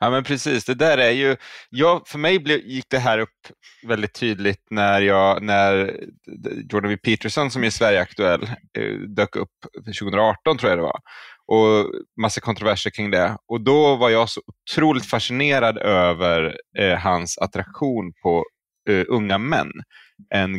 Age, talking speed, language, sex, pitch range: 20-39, 145 wpm, Swedish, male, 90-110 Hz